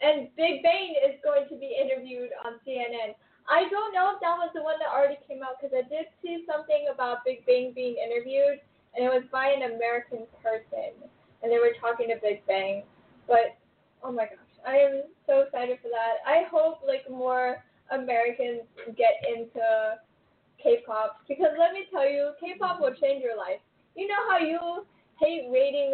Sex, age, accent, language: female, 10-29, American, English